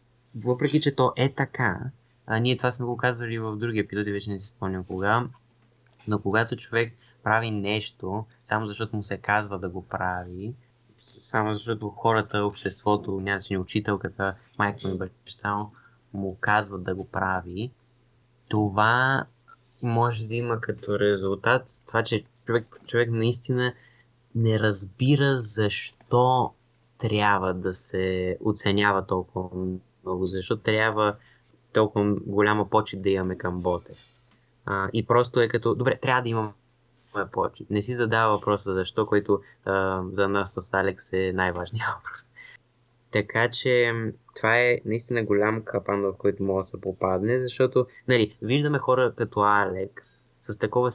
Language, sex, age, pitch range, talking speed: Bulgarian, male, 20-39, 100-120 Hz, 145 wpm